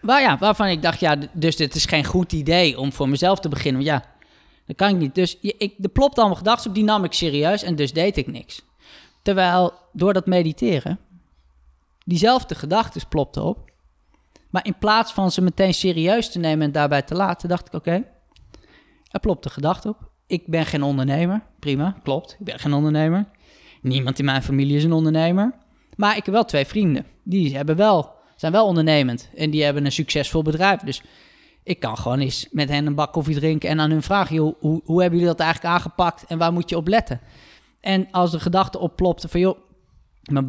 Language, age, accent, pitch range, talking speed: Dutch, 20-39, Dutch, 145-180 Hz, 210 wpm